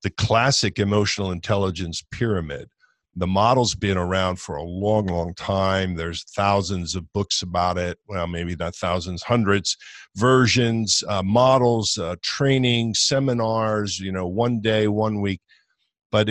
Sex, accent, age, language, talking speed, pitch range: male, American, 50-69, English, 140 wpm, 90-110 Hz